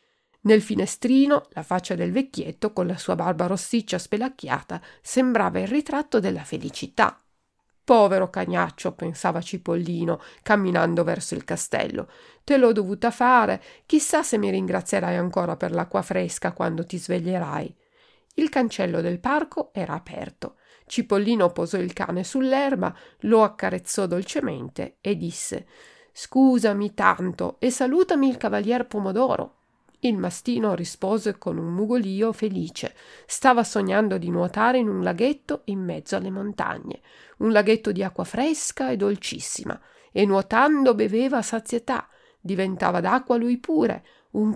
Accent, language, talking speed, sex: native, Italian, 130 wpm, female